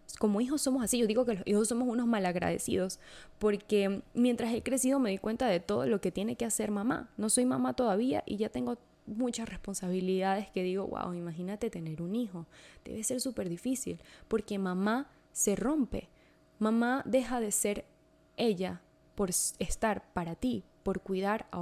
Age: 10-29